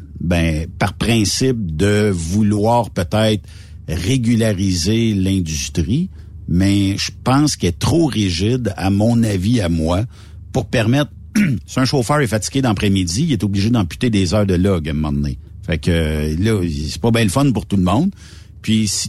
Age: 60-79